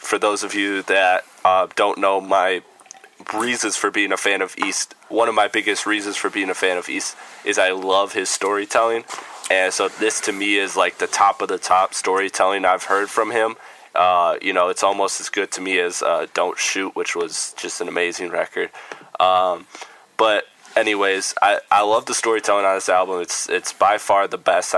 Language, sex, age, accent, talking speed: English, male, 20-39, American, 205 wpm